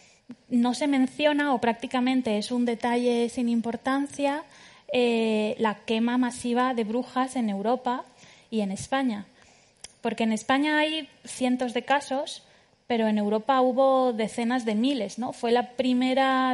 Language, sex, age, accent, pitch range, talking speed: Spanish, female, 20-39, Spanish, 225-270 Hz, 140 wpm